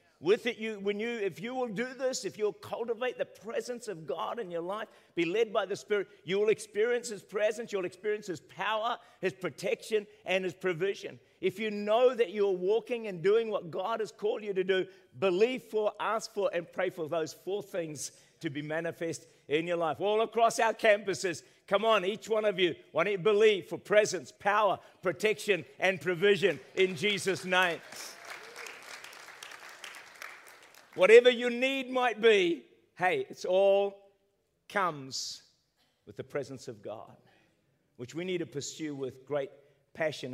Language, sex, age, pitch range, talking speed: English, male, 50-69, 165-225 Hz, 170 wpm